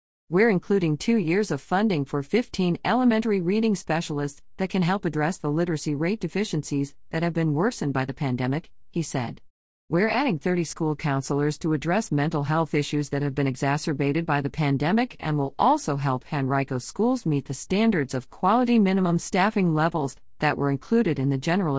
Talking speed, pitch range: 180 wpm, 140-185 Hz